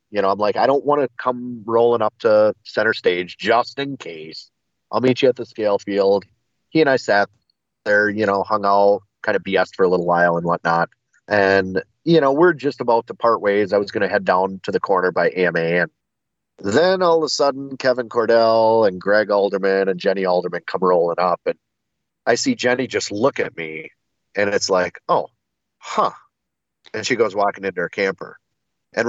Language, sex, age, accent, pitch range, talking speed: English, male, 30-49, American, 95-130 Hz, 205 wpm